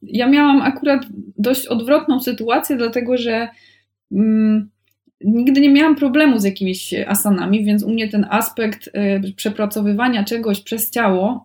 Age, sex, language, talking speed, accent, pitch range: 20-39, female, Polish, 135 wpm, native, 200-240 Hz